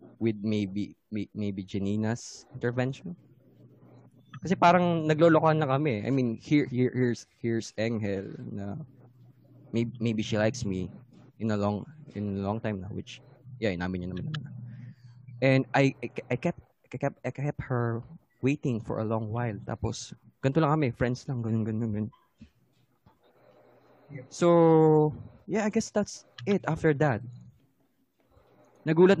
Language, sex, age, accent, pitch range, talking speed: English, male, 20-39, Filipino, 110-140 Hz, 140 wpm